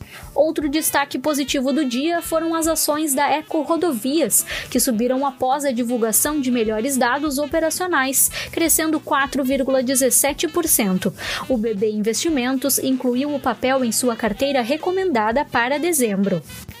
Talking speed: 120 wpm